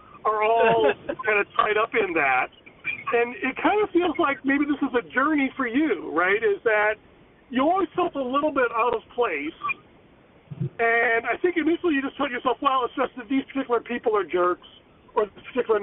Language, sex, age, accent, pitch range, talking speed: English, male, 40-59, American, 230-350 Hz, 200 wpm